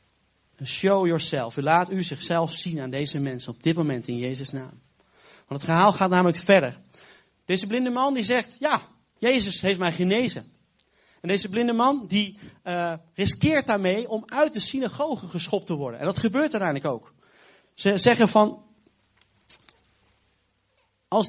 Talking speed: 160 wpm